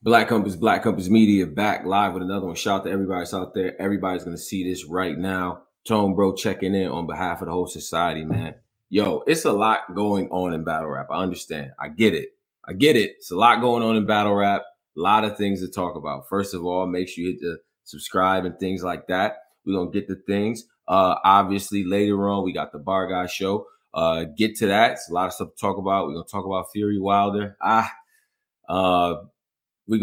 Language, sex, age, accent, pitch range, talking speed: English, male, 20-39, American, 90-115 Hz, 235 wpm